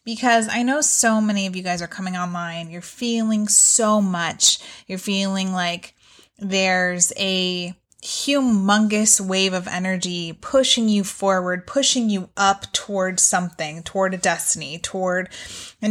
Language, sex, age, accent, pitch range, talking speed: English, female, 20-39, American, 185-225 Hz, 140 wpm